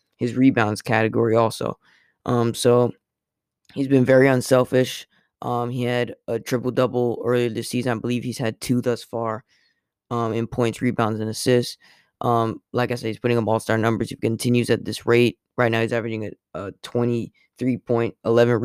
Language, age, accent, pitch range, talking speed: English, 10-29, American, 115-125 Hz, 165 wpm